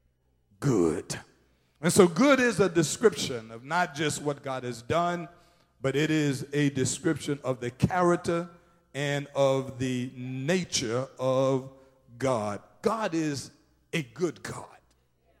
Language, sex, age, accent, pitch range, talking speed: English, male, 50-69, American, 120-165 Hz, 130 wpm